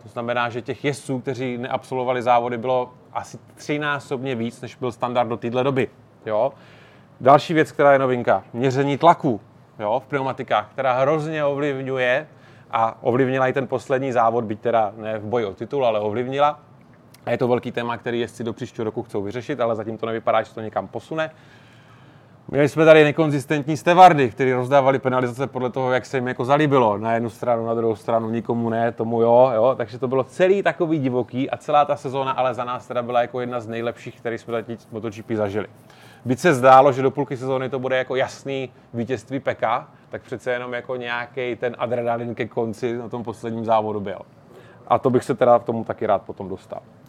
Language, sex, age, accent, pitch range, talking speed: Czech, male, 30-49, native, 120-135 Hz, 200 wpm